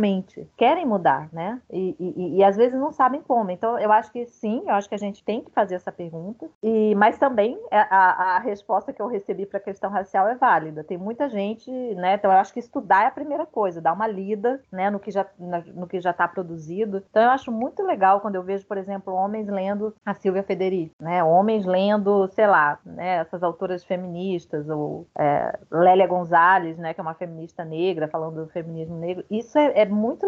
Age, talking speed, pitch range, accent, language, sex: 30-49, 205 wpm, 180-230 Hz, Brazilian, Portuguese, female